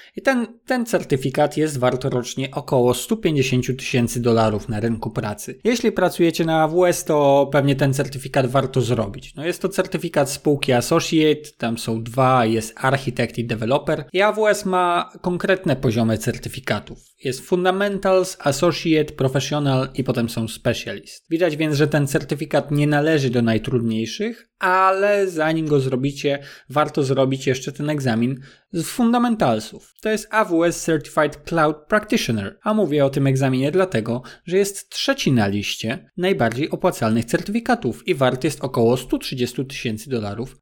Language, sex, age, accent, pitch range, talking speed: Polish, male, 20-39, native, 130-185 Hz, 140 wpm